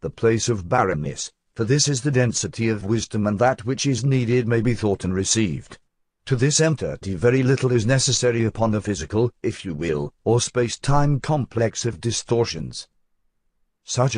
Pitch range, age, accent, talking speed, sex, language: 110-130 Hz, 50-69, British, 165 wpm, male, English